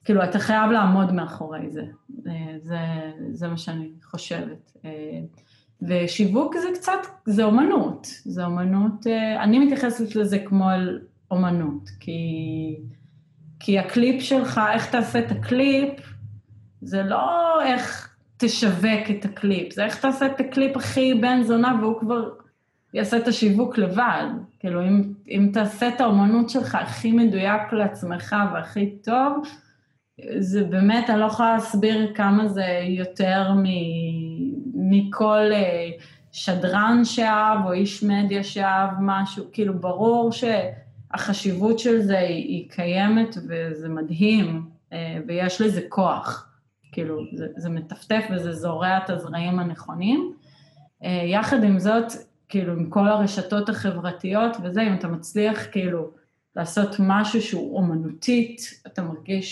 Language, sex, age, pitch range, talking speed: Hebrew, female, 30-49, 170-225 Hz, 125 wpm